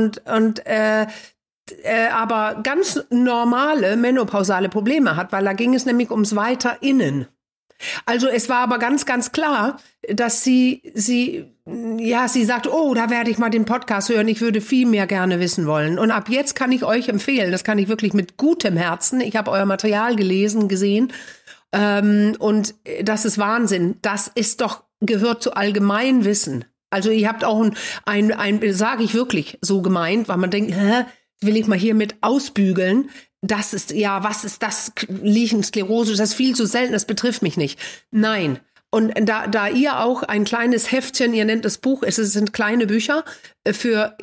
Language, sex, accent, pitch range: German, female, German, 205-245 Hz